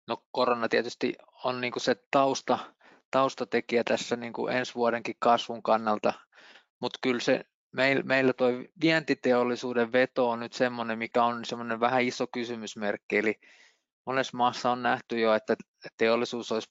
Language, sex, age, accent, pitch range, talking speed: Finnish, male, 20-39, native, 110-125 Hz, 140 wpm